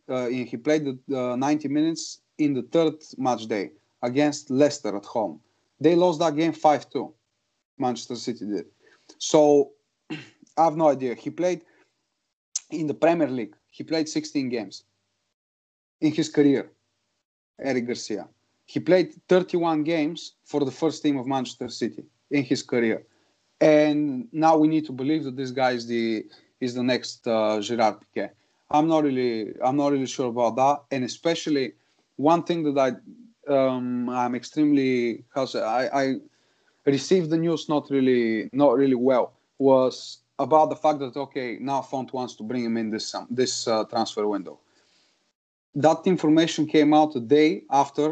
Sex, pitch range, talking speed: male, 120-155 Hz, 165 wpm